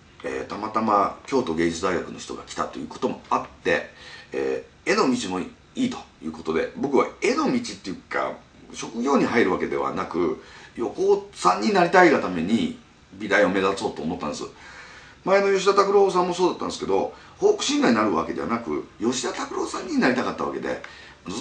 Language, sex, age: Japanese, male, 40-59